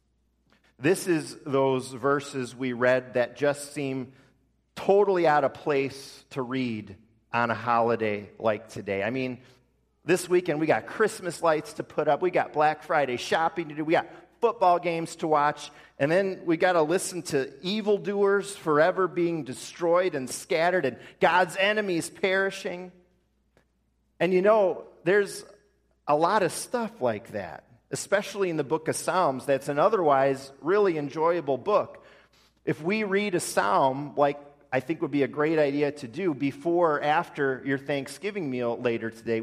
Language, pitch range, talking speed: English, 120-170 Hz, 160 wpm